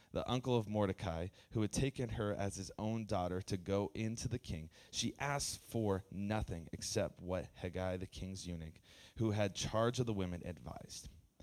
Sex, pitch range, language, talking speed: male, 95-115 Hz, English, 180 wpm